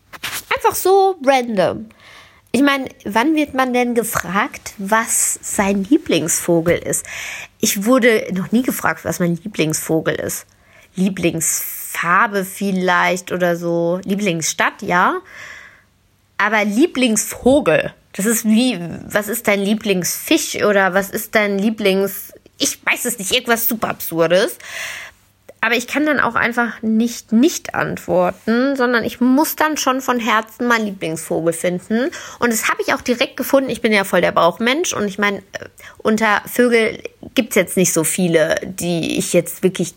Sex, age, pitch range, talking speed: female, 20-39, 185-255 Hz, 145 wpm